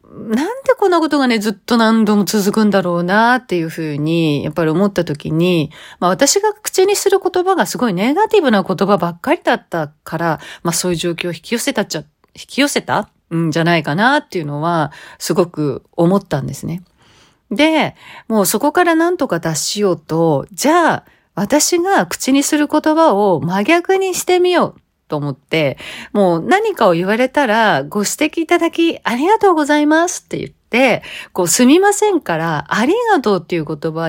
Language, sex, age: Japanese, female, 40-59